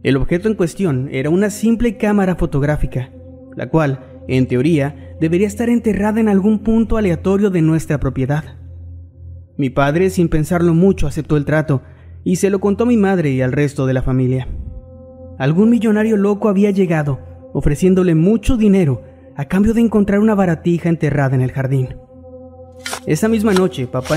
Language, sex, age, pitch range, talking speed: Spanish, male, 30-49, 130-195 Hz, 165 wpm